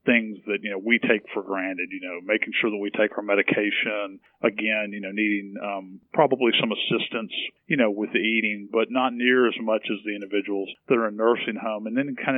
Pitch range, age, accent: 100-120 Hz, 40-59, American